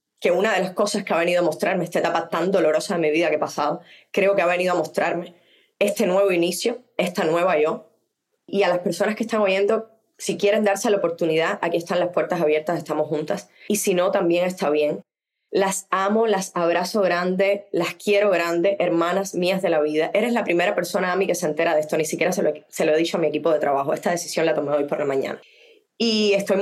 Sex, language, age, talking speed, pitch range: female, Spanish, 20-39, 235 wpm, 165-210 Hz